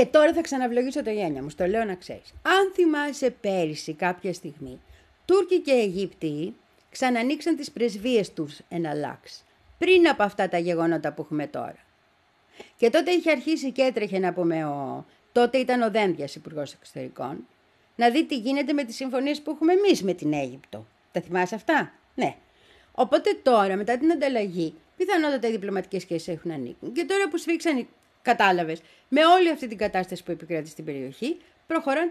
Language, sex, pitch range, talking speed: Greek, female, 170-285 Hz, 170 wpm